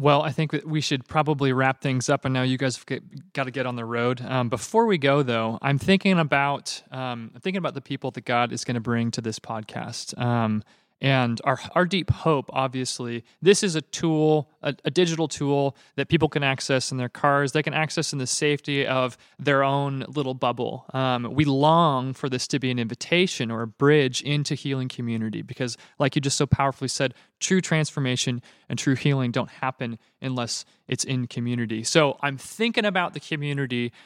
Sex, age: male, 30-49